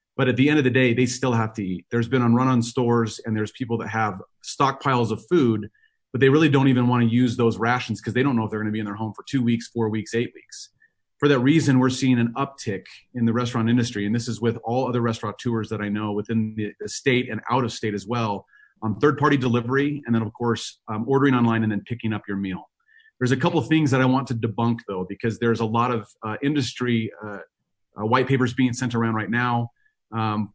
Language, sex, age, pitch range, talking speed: English, male, 30-49, 110-130 Hz, 250 wpm